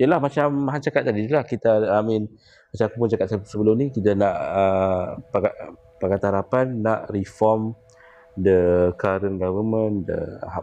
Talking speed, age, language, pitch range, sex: 145 wpm, 20-39, Malay, 95-130 Hz, male